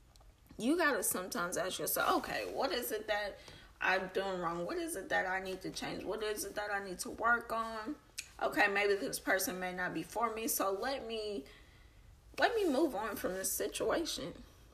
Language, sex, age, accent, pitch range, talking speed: English, female, 10-29, American, 180-250 Hz, 205 wpm